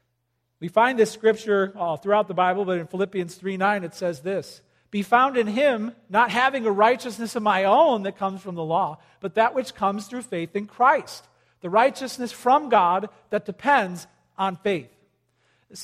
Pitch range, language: 165-215 Hz, English